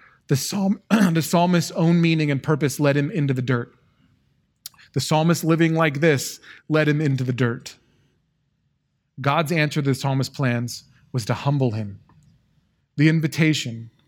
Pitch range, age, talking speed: 130-155 Hz, 30-49, 145 wpm